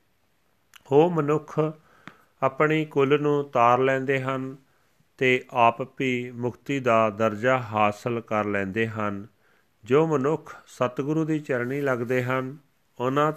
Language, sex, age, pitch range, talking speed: Punjabi, male, 40-59, 105-135 Hz, 115 wpm